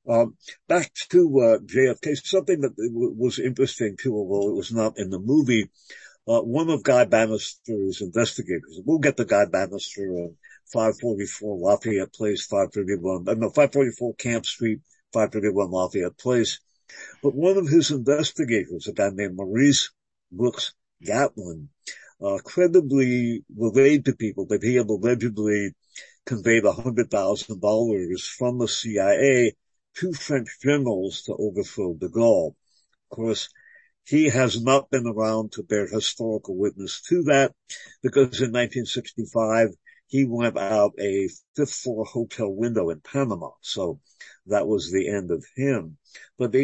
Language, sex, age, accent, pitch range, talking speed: English, male, 50-69, American, 105-135 Hz, 150 wpm